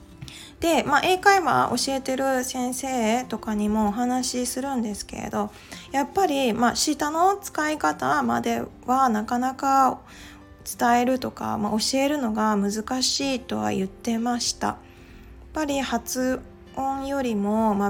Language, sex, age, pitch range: Japanese, female, 20-39, 210-260 Hz